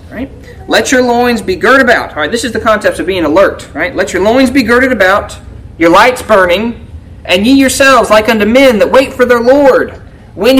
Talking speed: 205 wpm